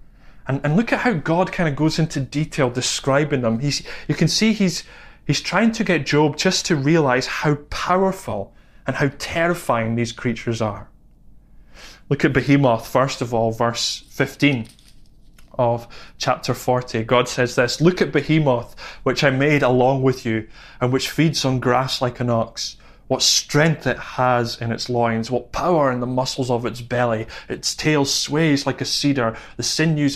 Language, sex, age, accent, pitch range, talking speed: English, male, 20-39, British, 120-150 Hz, 175 wpm